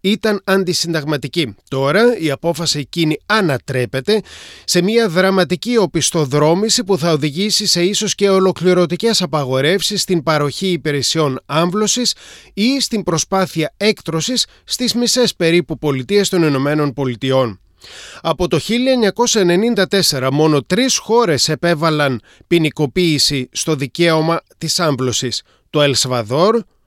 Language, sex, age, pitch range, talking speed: Greek, male, 30-49, 140-195 Hz, 105 wpm